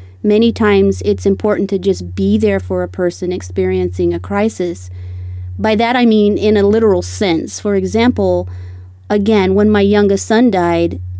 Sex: female